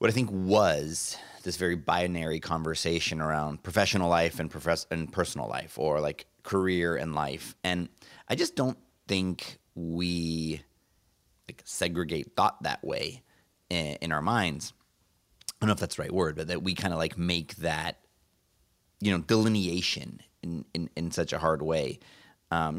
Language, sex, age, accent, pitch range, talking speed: English, male, 30-49, American, 80-95 Hz, 165 wpm